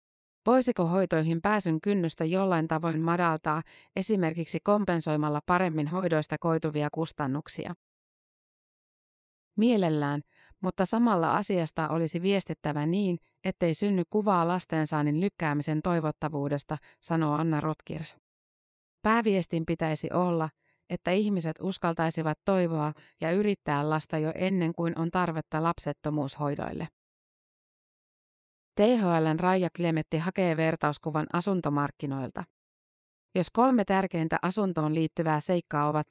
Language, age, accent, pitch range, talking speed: Finnish, 30-49, native, 155-185 Hz, 95 wpm